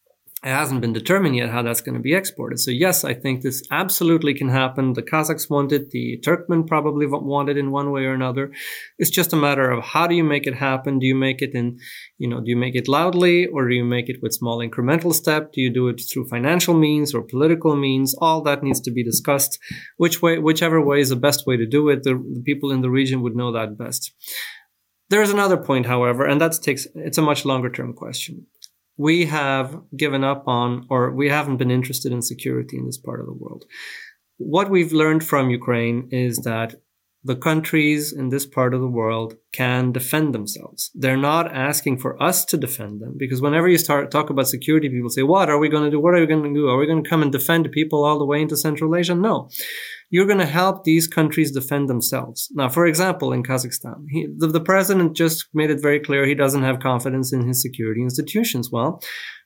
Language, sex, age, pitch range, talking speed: English, male, 30-49, 125-160 Hz, 230 wpm